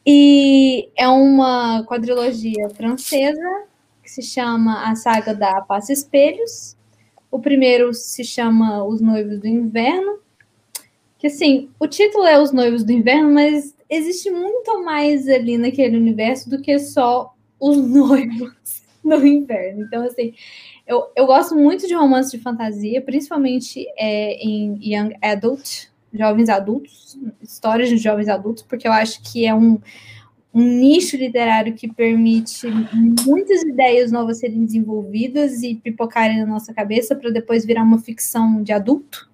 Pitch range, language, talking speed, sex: 225-285 Hz, Portuguese, 140 wpm, female